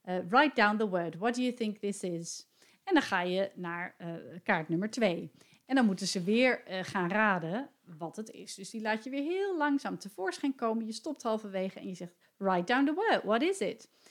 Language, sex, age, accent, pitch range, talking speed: Dutch, female, 40-59, Dutch, 180-250 Hz, 225 wpm